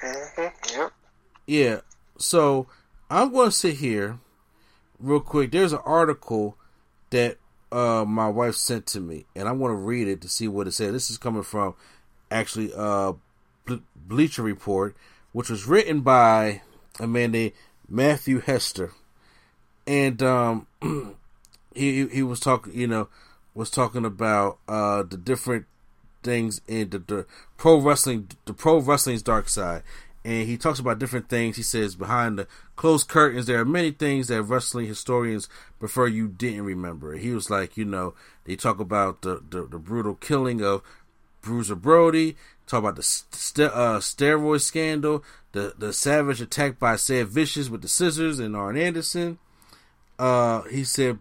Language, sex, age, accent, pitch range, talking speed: English, male, 30-49, American, 105-140 Hz, 160 wpm